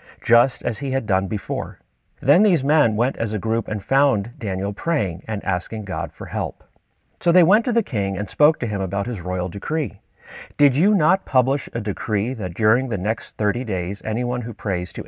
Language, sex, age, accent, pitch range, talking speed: English, male, 40-59, American, 100-140 Hz, 205 wpm